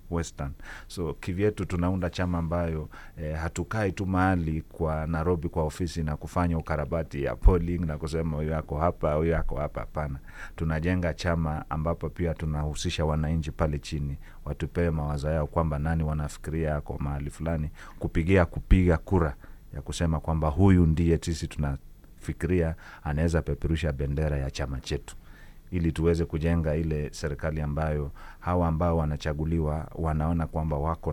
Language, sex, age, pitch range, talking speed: Swahili, male, 40-59, 75-85 Hz, 135 wpm